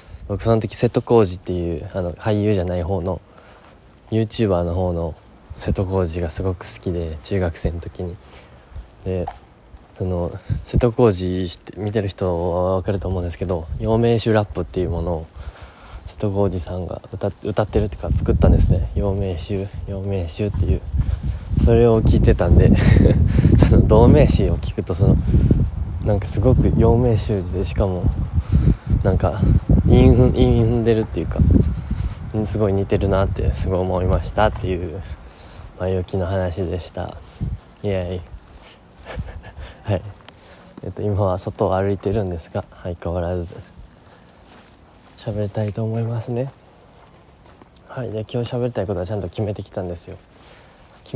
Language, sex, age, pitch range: Japanese, male, 20-39, 90-110 Hz